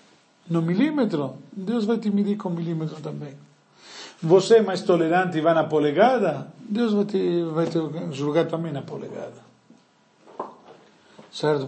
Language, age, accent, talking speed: Portuguese, 50-69, Italian, 140 wpm